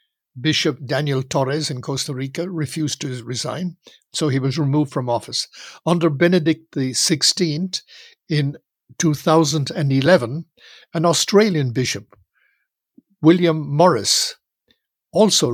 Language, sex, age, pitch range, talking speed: English, male, 60-79, 140-170 Hz, 100 wpm